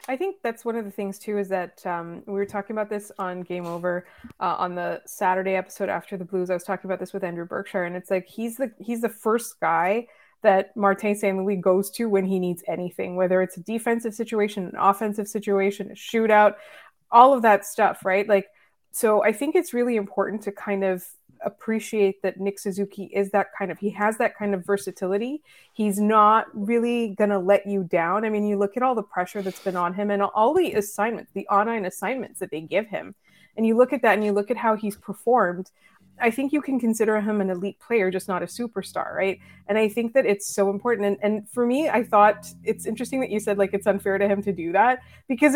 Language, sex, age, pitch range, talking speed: English, female, 20-39, 195-230 Hz, 230 wpm